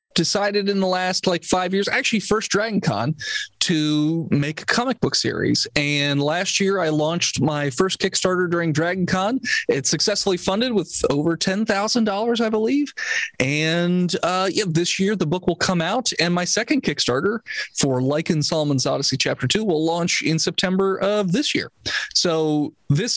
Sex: male